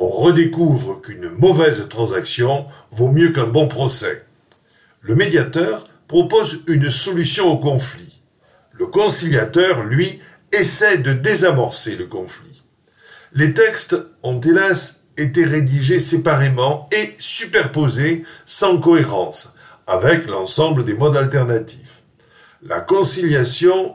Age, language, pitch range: 50-69, French, 130-175 Hz